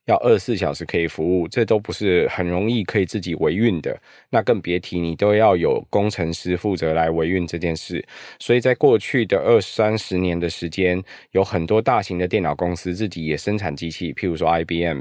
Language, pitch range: Chinese, 85-105 Hz